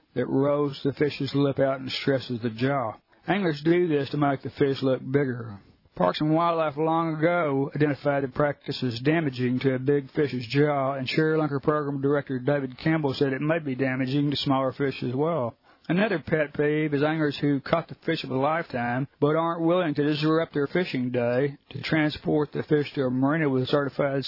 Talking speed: 195 wpm